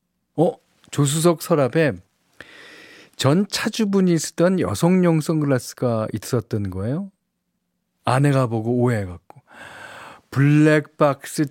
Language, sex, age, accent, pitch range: Korean, male, 40-59, native, 125-200 Hz